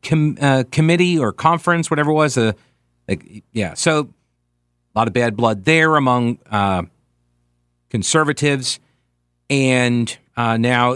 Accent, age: American, 40-59